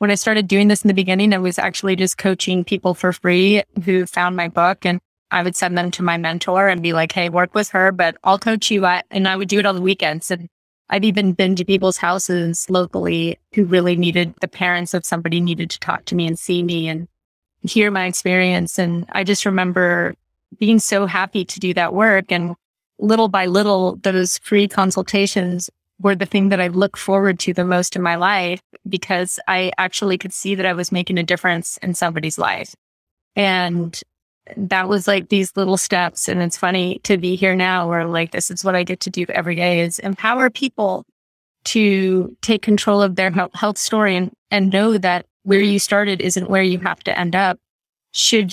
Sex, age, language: female, 20-39, English